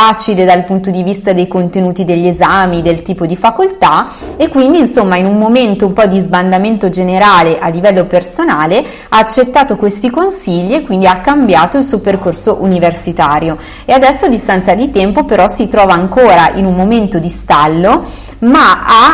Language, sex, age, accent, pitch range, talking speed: Italian, female, 30-49, native, 185-240 Hz, 170 wpm